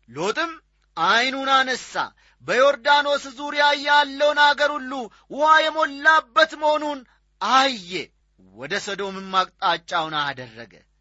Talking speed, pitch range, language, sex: 70 wpm, 170-255 Hz, Amharic, male